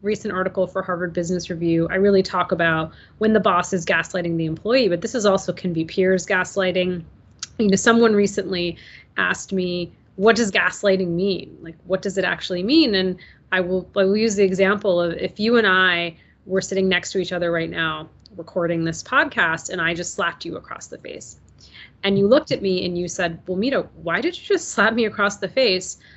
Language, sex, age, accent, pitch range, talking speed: English, female, 30-49, American, 165-200 Hz, 210 wpm